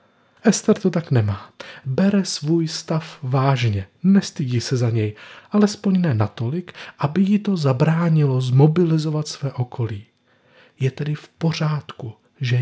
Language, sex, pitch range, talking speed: Czech, male, 120-160 Hz, 130 wpm